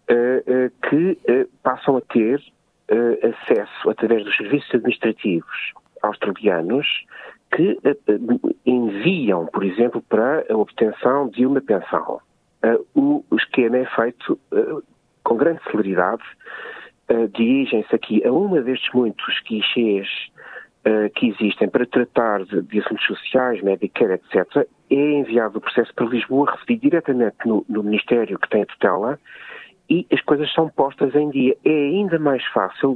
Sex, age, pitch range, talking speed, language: male, 50-69, 110-145 Hz, 130 wpm, Portuguese